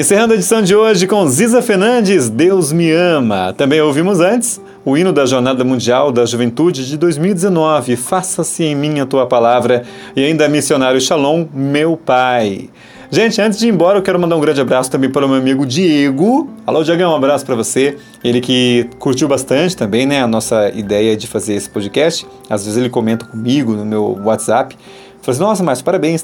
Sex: male